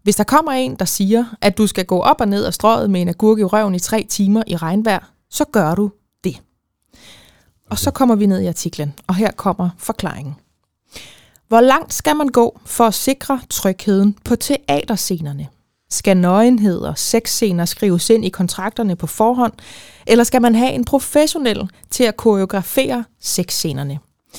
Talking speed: 170 wpm